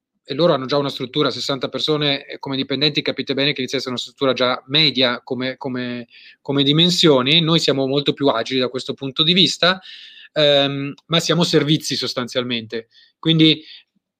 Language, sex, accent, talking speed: Italian, male, native, 165 wpm